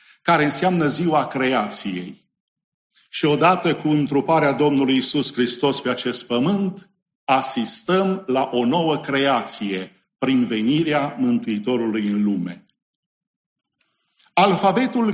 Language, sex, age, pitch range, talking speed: English, male, 50-69, 145-200 Hz, 100 wpm